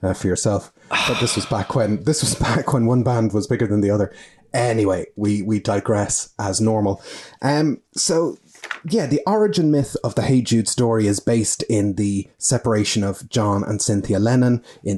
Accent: Irish